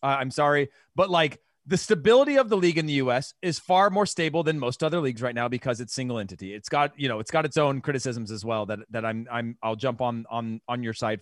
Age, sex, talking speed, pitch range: 30-49, male, 275 wpm, 140-190 Hz